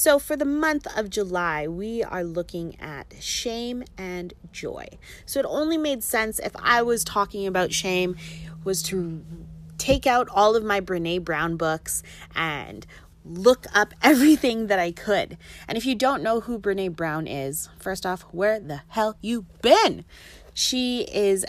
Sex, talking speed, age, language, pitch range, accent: female, 165 wpm, 30-49, English, 170-235 Hz, American